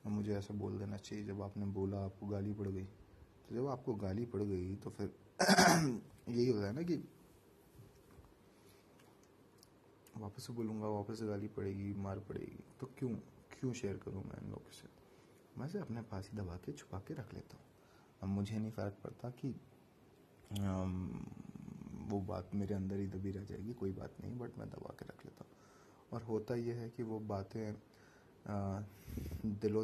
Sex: male